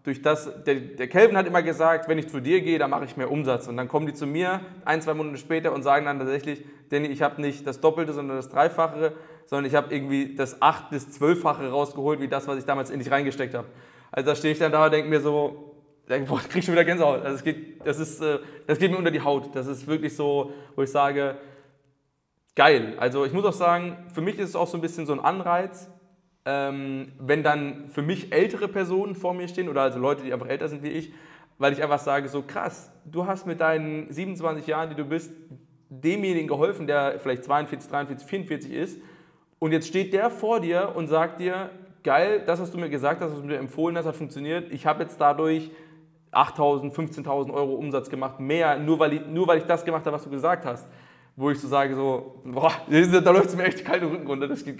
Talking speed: 235 wpm